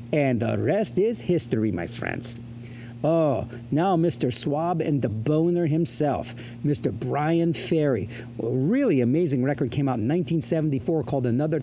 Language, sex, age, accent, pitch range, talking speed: English, male, 50-69, American, 120-165 Hz, 145 wpm